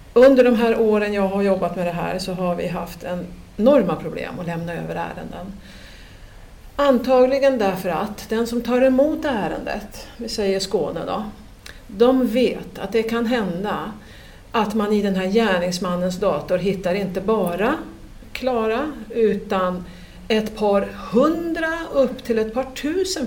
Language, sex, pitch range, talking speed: Swedish, female, 185-250 Hz, 150 wpm